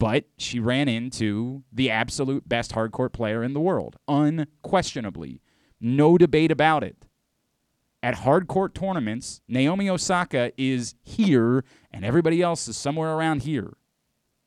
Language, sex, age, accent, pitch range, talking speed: English, male, 30-49, American, 120-155 Hz, 135 wpm